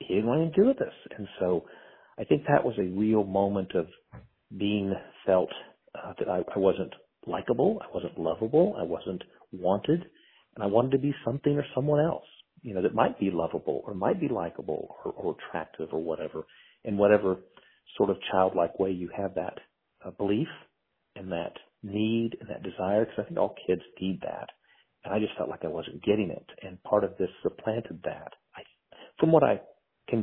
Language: English